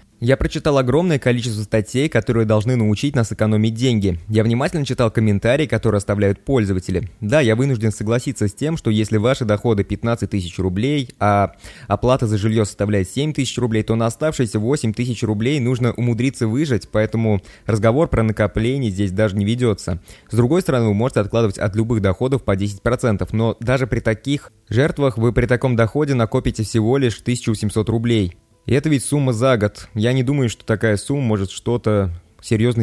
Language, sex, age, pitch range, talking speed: Russian, male, 20-39, 105-125 Hz, 175 wpm